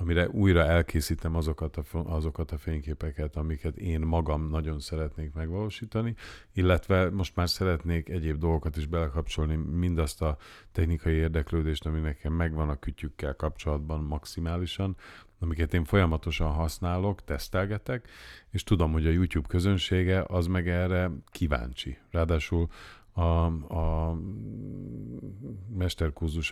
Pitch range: 75-90 Hz